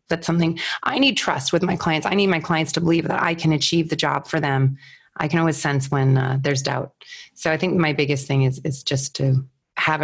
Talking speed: 245 wpm